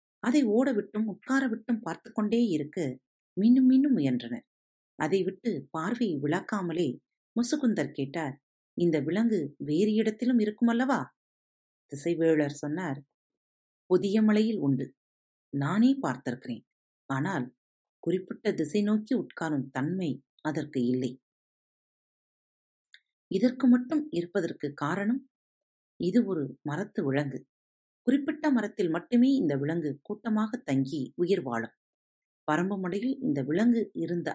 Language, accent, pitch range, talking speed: Tamil, native, 145-225 Hz, 100 wpm